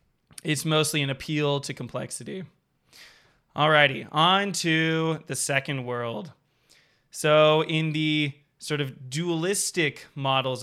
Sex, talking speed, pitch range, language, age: male, 105 wpm, 135-160 Hz, English, 20-39